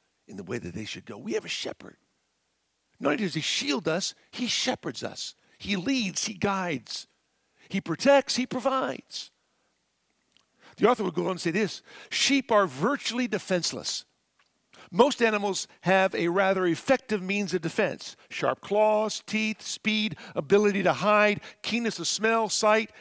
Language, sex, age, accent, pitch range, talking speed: English, male, 50-69, American, 140-210 Hz, 155 wpm